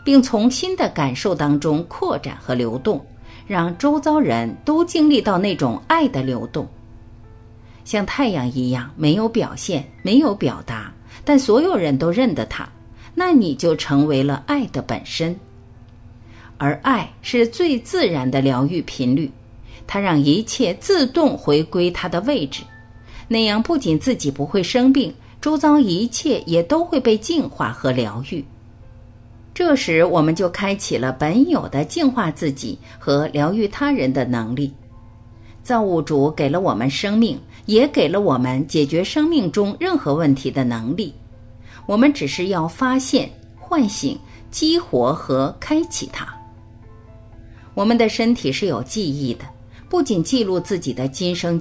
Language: Chinese